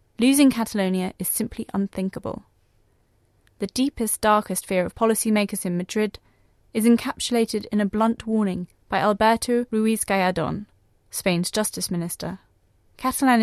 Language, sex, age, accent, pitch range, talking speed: English, female, 30-49, British, 185-230 Hz, 115 wpm